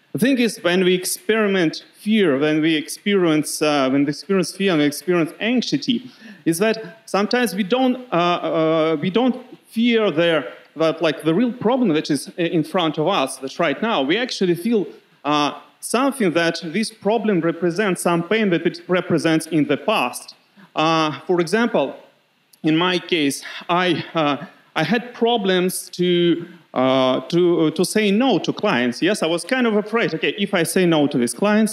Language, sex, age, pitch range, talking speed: English, male, 30-49, 160-220 Hz, 180 wpm